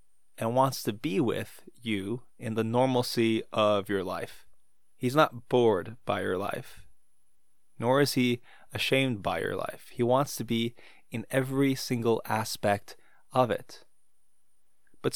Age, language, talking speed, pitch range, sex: 20-39, English, 145 wpm, 105-130 Hz, male